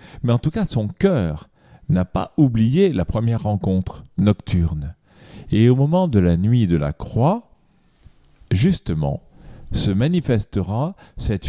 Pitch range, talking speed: 95-135 Hz, 135 wpm